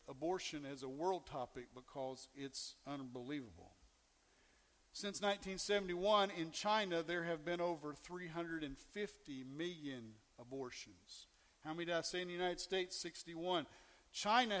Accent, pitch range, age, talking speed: American, 165-210 Hz, 50-69, 125 wpm